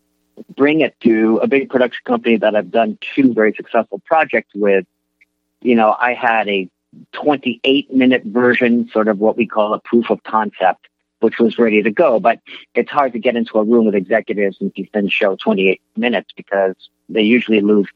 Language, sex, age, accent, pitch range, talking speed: English, male, 50-69, American, 100-130 Hz, 185 wpm